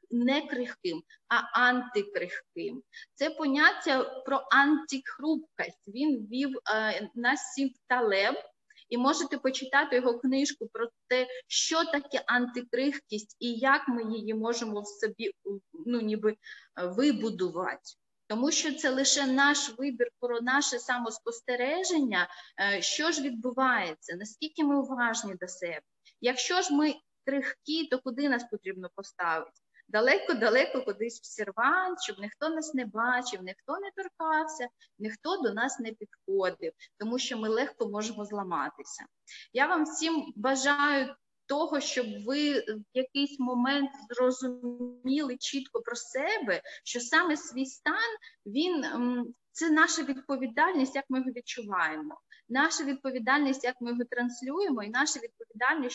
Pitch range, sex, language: 235-290 Hz, female, Ukrainian